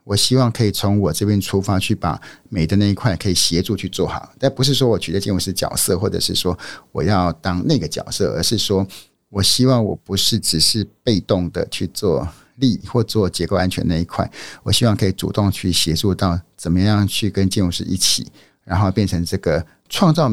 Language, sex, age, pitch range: Chinese, male, 50-69, 95-115 Hz